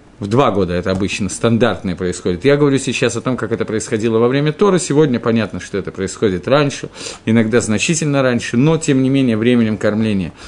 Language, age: Russian, 40-59